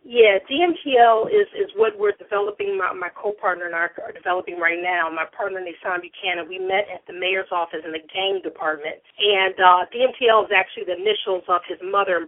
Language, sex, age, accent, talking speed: English, female, 40-59, American, 205 wpm